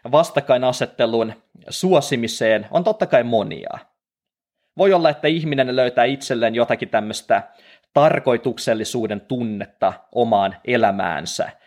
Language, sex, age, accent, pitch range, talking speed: Finnish, male, 20-39, native, 115-150 Hz, 95 wpm